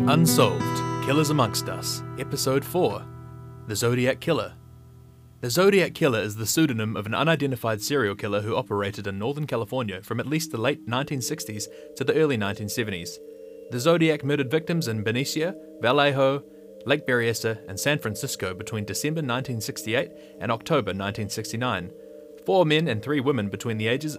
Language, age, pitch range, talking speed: English, 20-39, 110-150 Hz, 150 wpm